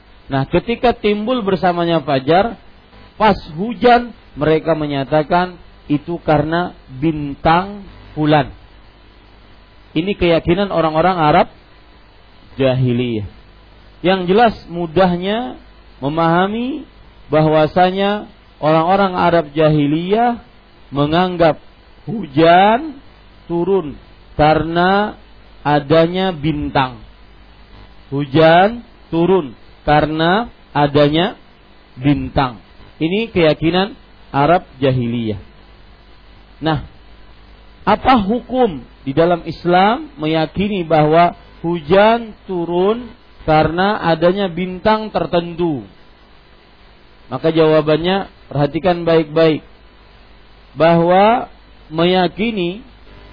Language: Malay